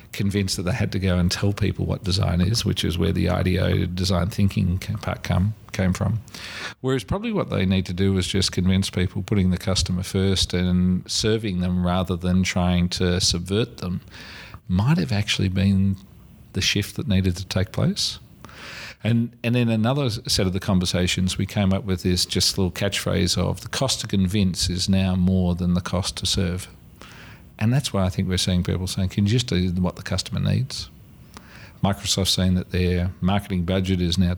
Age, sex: 40-59, male